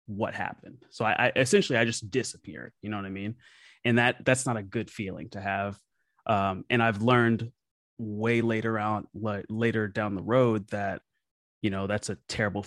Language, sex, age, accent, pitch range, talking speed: English, male, 30-49, American, 100-115 Hz, 190 wpm